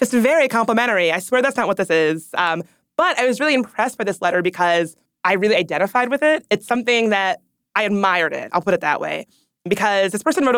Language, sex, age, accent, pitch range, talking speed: English, female, 20-39, American, 175-230 Hz, 225 wpm